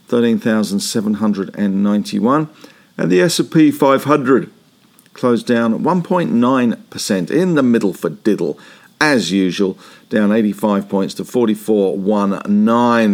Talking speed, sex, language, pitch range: 90 wpm, male, English, 105-150 Hz